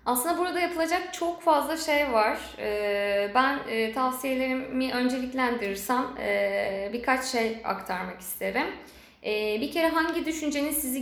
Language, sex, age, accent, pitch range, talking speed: Turkish, female, 20-39, native, 225-265 Hz, 105 wpm